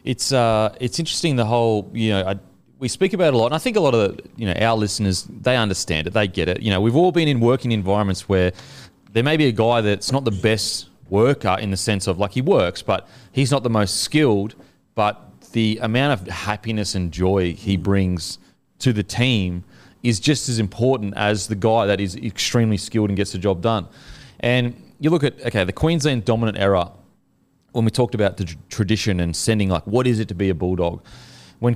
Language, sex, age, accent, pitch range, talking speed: English, male, 30-49, Australian, 95-120 Hz, 225 wpm